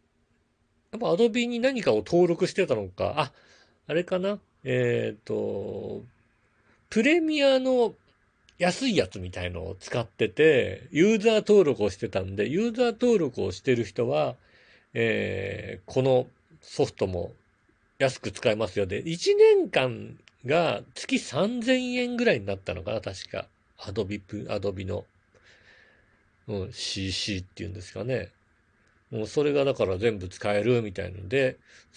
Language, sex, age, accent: Japanese, male, 40-59, native